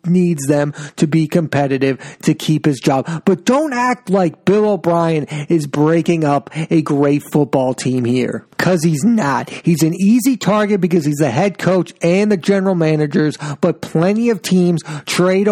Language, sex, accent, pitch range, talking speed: English, male, American, 150-205 Hz, 170 wpm